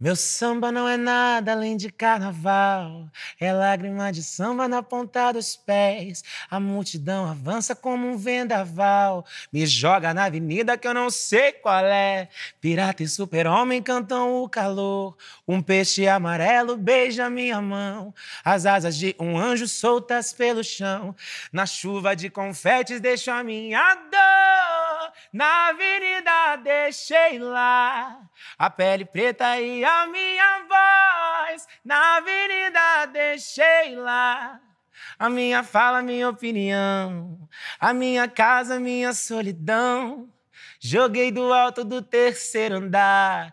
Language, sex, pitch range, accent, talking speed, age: Portuguese, male, 195-245 Hz, Brazilian, 130 wpm, 20-39